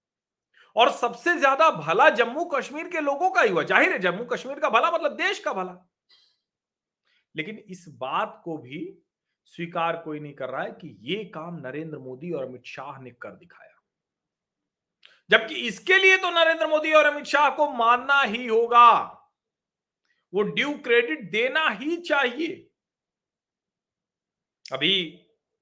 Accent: native